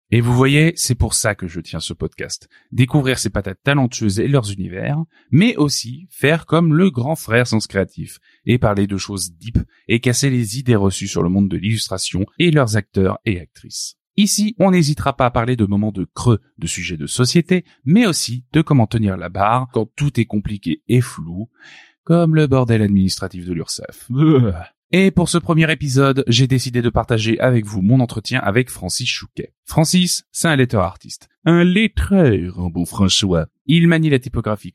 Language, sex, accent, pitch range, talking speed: French, male, French, 100-150 Hz, 190 wpm